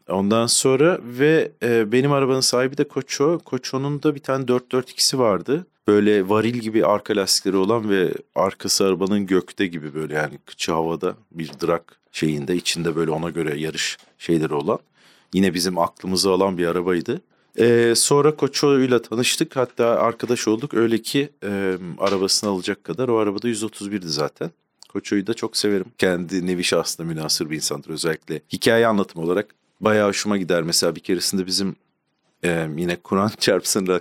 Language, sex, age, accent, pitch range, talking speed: Turkish, male, 40-59, native, 85-120 Hz, 155 wpm